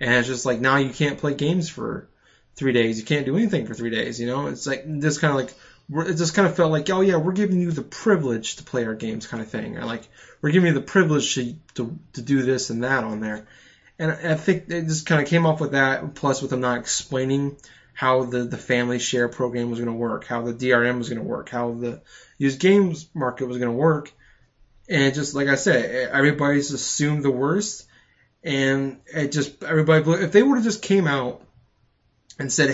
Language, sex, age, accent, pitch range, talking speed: English, male, 20-39, American, 125-155 Hz, 235 wpm